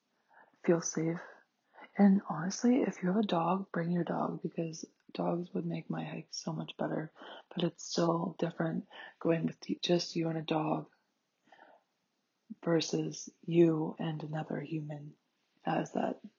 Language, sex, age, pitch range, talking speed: English, female, 20-39, 165-180 Hz, 145 wpm